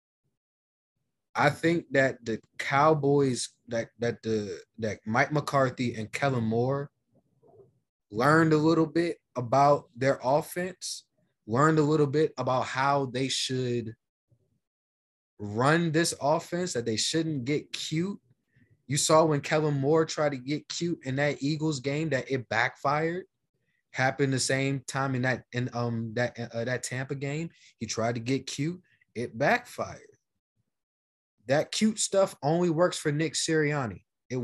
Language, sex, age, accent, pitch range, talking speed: English, male, 20-39, American, 120-155 Hz, 145 wpm